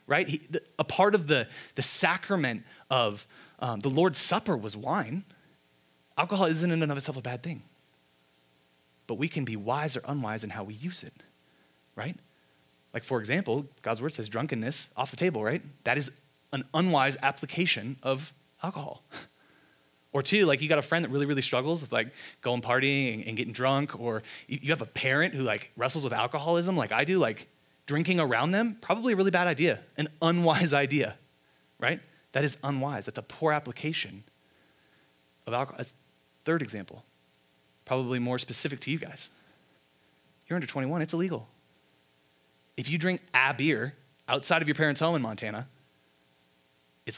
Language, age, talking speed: English, 20-39, 170 wpm